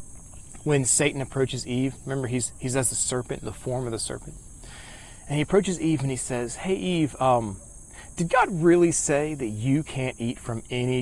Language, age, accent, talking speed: English, 40-59, American, 190 wpm